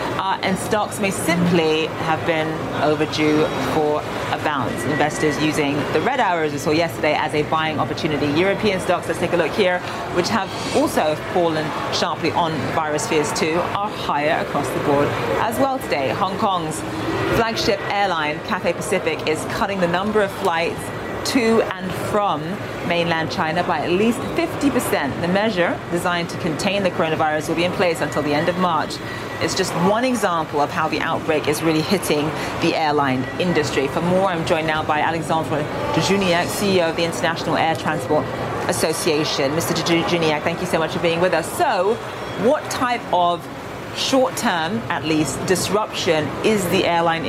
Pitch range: 150-180 Hz